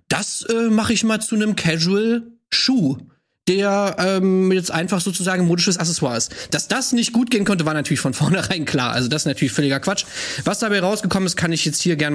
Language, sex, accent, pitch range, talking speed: German, male, German, 150-200 Hz, 205 wpm